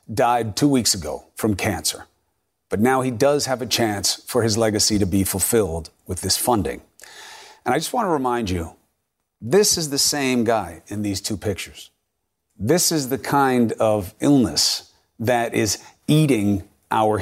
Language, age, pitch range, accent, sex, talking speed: English, 40-59, 105-145 Hz, American, male, 165 wpm